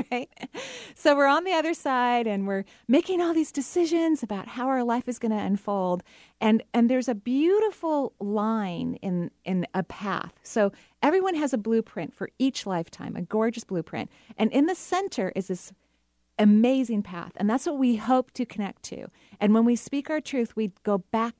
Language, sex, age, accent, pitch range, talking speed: English, female, 40-59, American, 180-245 Hz, 190 wpm